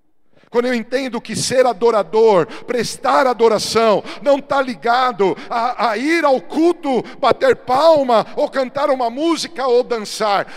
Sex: male